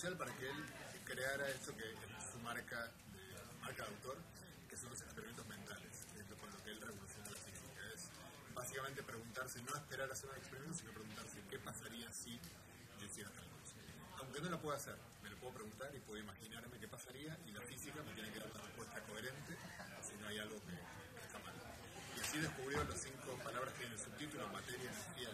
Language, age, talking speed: Spanish, 30-49, 205 wpm